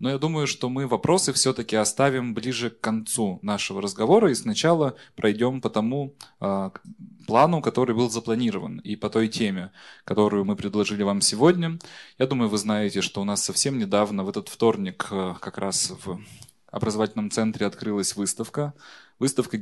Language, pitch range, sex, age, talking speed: Russian, 105-135 Hz, male, 20-39, 155 wpm